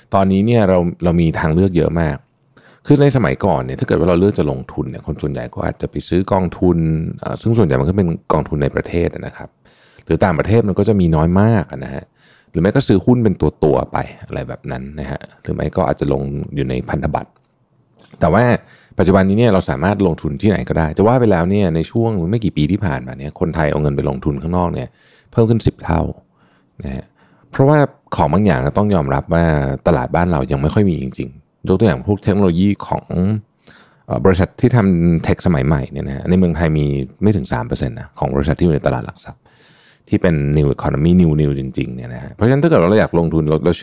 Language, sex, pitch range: Thai, male, 70-100 Hz